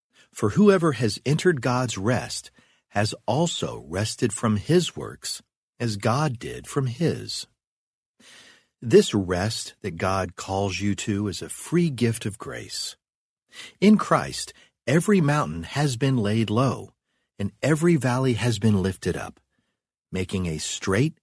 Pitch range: 95-135 Hz